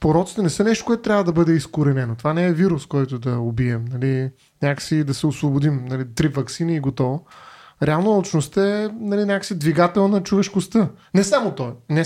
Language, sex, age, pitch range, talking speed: Bulgarian, male, 30-49, 140-185 Hz, 190 wpm